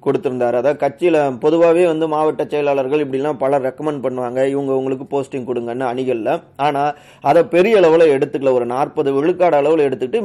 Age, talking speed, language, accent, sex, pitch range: 30-49, 150 wpm, Tamil, native, male, 130-165 Hz